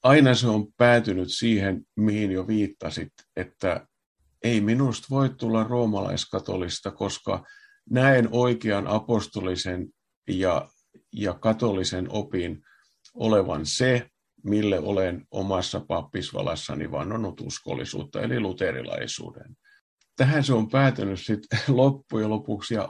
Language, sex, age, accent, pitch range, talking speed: Finnish, male, 50-69, native, 100-120 Hz, 105 wpm